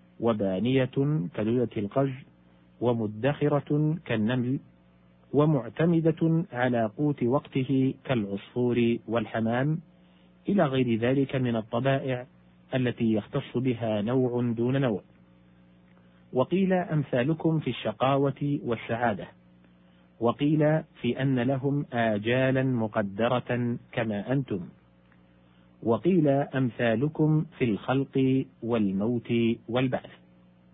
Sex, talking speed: male, 80 wpm